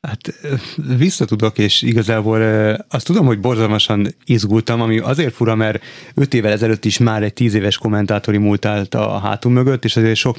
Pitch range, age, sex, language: 105-120 Hz, 30-49, male, Hungarian